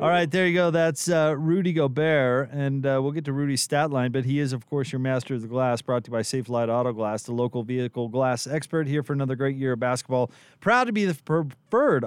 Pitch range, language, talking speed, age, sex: 120-145 Hz, English, 260 wpm, 30-49, male